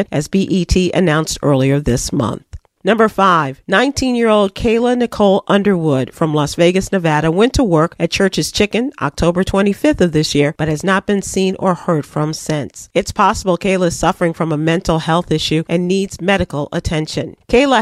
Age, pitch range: 40-59, 165-210 Hz